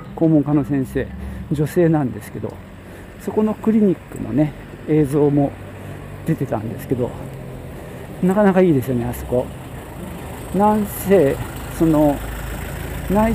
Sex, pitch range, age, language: male, 115-155 Hz, 50-69, Japanese